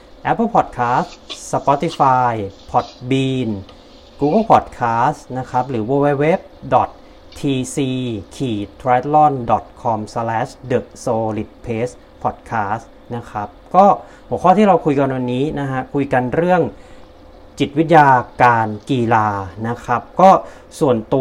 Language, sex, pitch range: Thai, male, 110-145 Hz